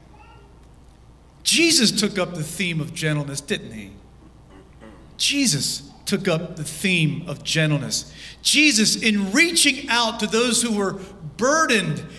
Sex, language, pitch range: male, English, 180-265 Hz